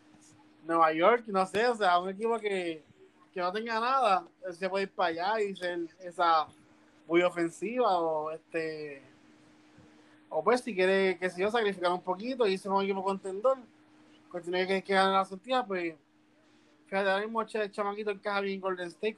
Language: Spanish